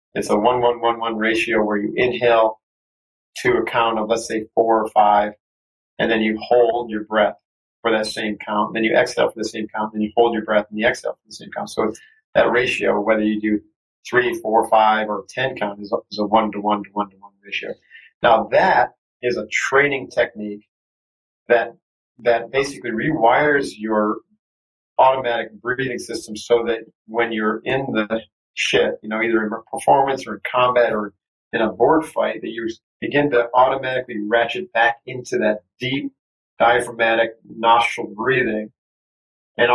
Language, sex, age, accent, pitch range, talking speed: English, male, 40-59, American, 105-120 Hz, 170 wpm